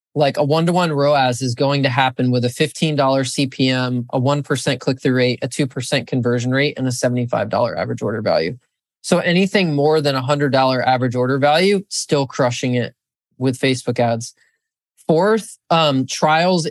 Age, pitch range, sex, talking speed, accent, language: 20-39, 130-155 Hz, male, 170 wpm, American, English